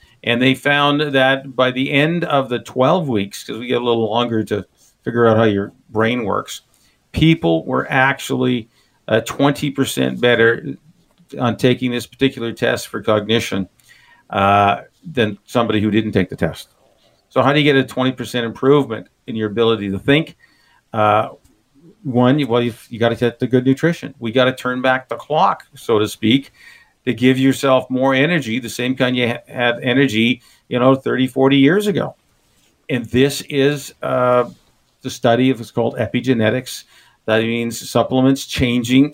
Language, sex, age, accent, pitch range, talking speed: English, male, 50-69, American, 115-135 Hz, 165 wpm